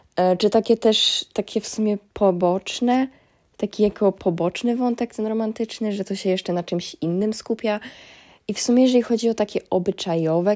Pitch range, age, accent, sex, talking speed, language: 165-220 Hz, 20-39, native, female, 170 wpm, Polish